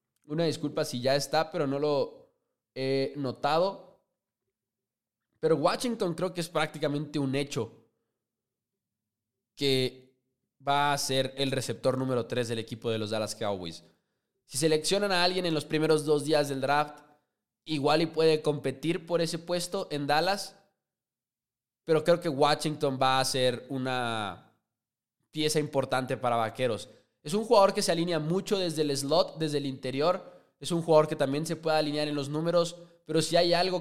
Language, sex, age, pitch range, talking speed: English, male, 20-39, 135-180 Hz, 165 wpm